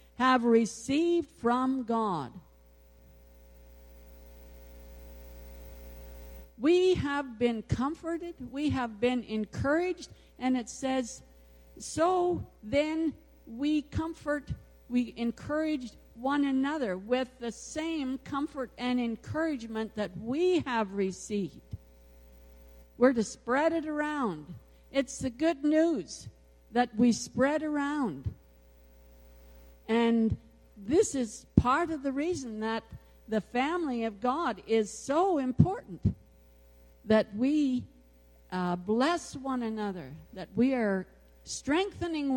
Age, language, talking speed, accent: 50-69, English, 100 wpm, American